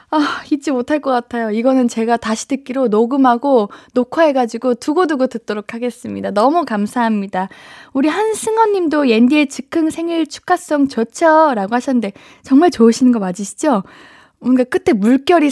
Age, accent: 20-39, native